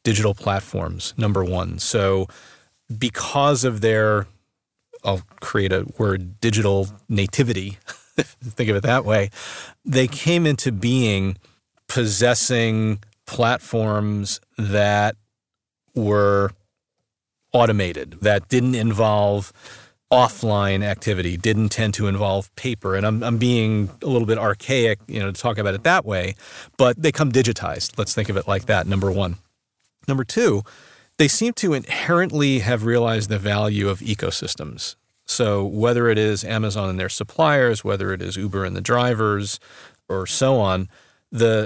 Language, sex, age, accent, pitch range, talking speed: English, male, 40-59, American, 100-120 Hz, 140 wpm